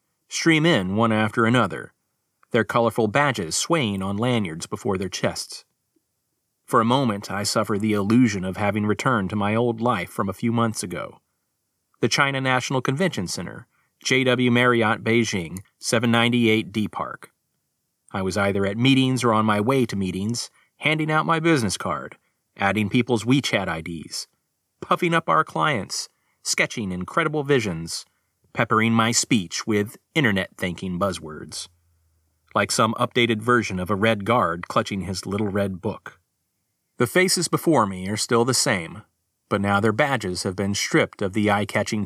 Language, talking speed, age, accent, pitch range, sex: English, 155 wpm, 30-49, American, 100-125 Hz, male